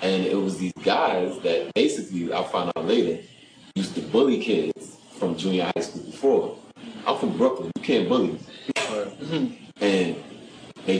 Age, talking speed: 30-49, 155 wpm